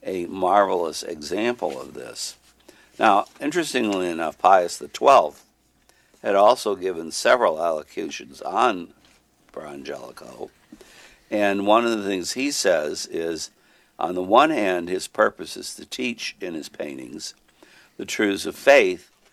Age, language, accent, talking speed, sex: 60-79, English, American, 125 wpm, male